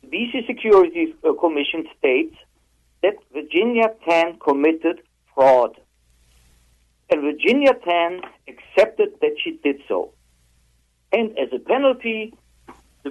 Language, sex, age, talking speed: English, male, 50-69, 105 wpm